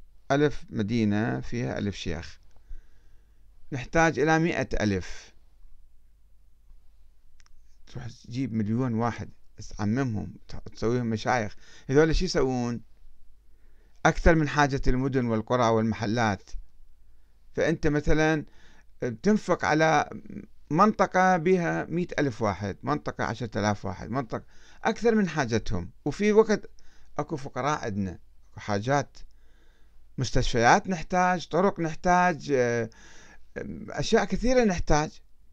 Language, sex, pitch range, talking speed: Arabic, male, 100-150 Hz, 95 wpm